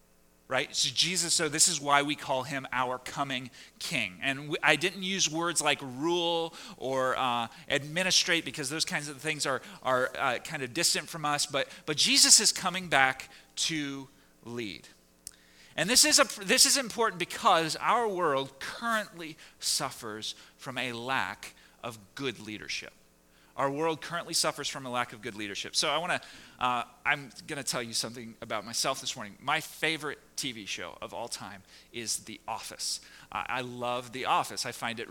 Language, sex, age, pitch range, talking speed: English, male, 30-49, 125-165 Hz, 180 wpm